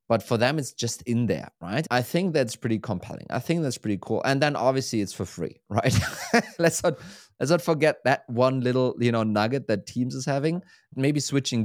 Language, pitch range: English, 105-140 Hz